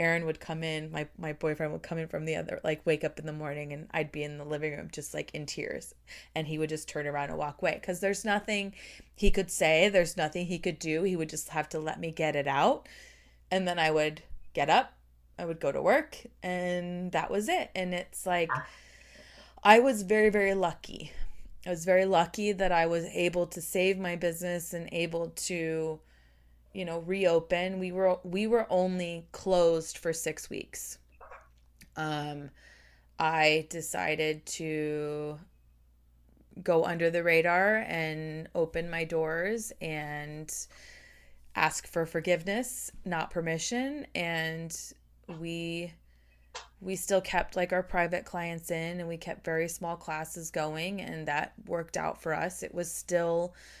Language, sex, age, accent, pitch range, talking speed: English, female, 20-39, American, 155-180 Hz, 170 wpm